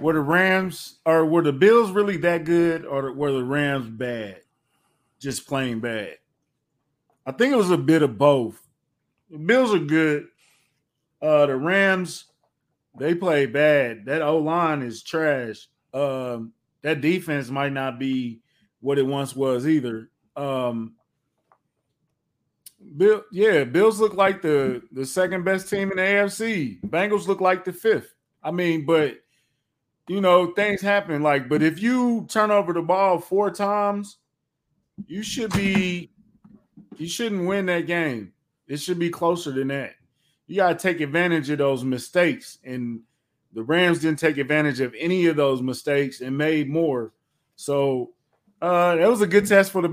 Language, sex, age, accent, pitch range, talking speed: English, male, 20-39, American, 140-190 Hz, 160 wpm